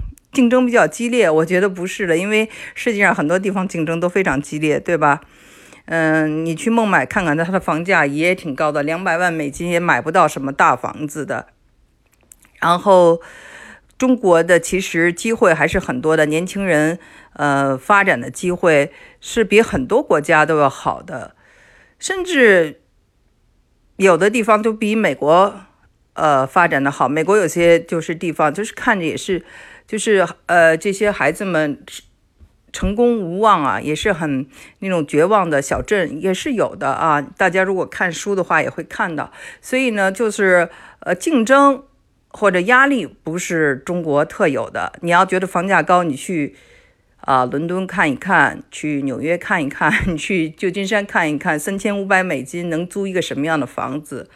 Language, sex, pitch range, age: Chinese, female, 155-200 Hz, 50-69